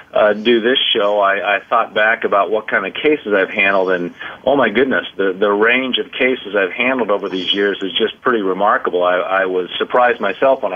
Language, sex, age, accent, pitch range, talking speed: English, male, 40-59, American, 105-125 Hz, 220 wpm